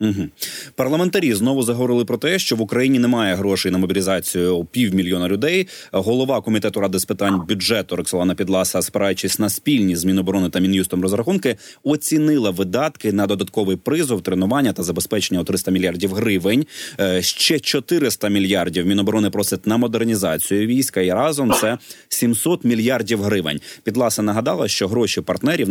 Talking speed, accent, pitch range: 145 wpm, native, 95-125 Hz